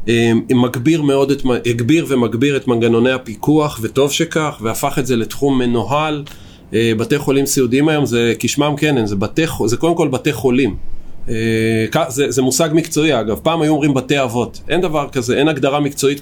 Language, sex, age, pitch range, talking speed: Hebrew, male, 40-59, 115-150 Hz, 155 wpm